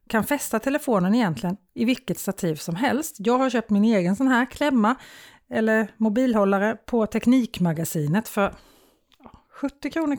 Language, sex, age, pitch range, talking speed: Swedish, female, 30-49, 180-250 Hz, 140 wpm